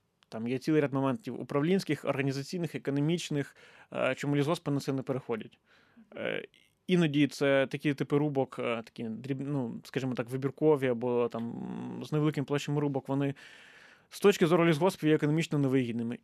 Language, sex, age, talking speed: Ukrainian, male, 20-39, 140 wpm